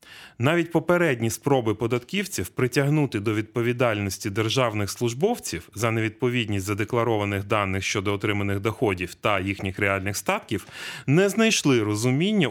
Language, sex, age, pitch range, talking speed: Ukrainian, male, 30-49, 110-145 Hz, 110 wpm